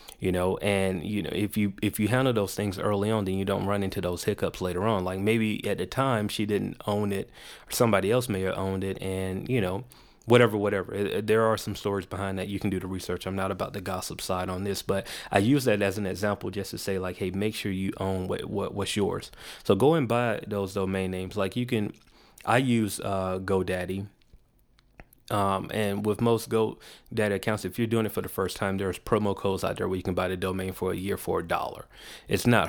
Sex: male